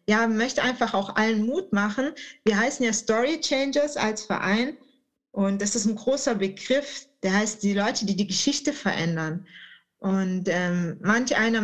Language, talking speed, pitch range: German, 165 wpm, 205-250 Hz